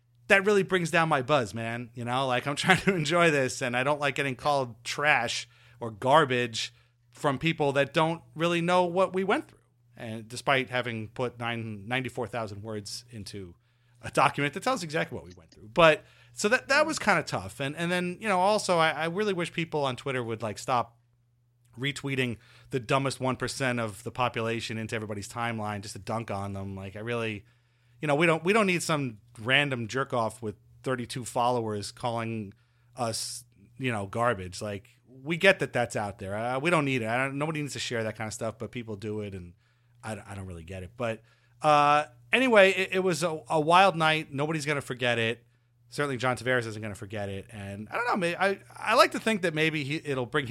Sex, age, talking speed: male, 30-49, 215 wpm